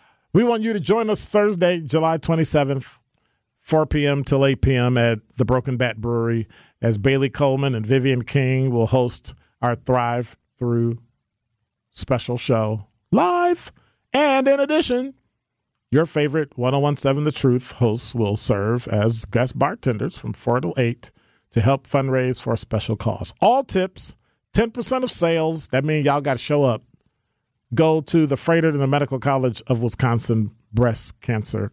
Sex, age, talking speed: male, 40-59, 155 wpm